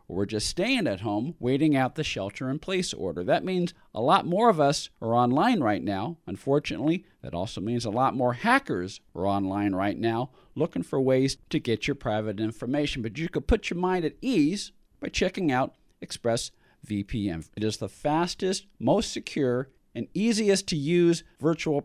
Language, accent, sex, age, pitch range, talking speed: English, American, male, 40-59, 125-175 Hz, 170 wpm